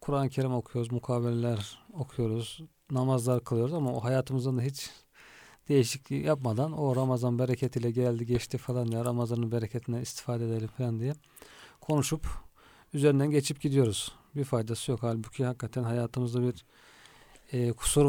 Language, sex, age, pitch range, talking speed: Turkish, male, 40-59, 115-130 Hz, 135 wpm